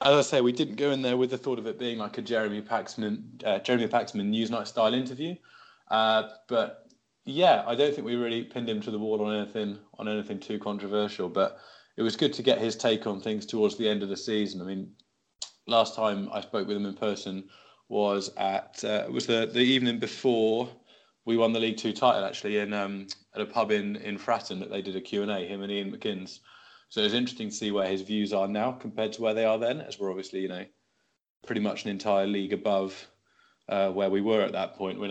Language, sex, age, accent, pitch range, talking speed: English, male, 20-39, British, 100-115 Hz, 240 wpm